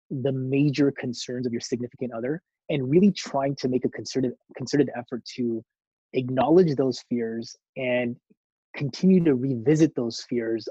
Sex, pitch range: male, 125-150 Hz